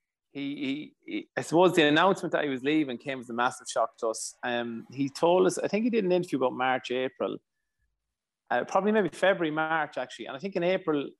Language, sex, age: English, male, 30-49